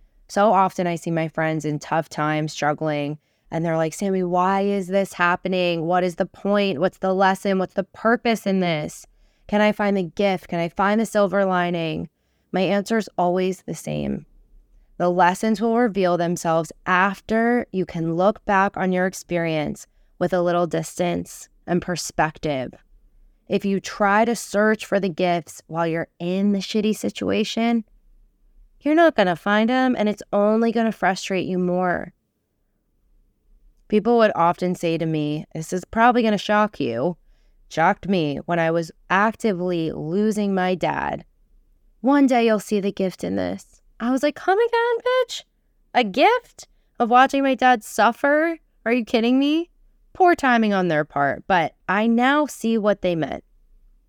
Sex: female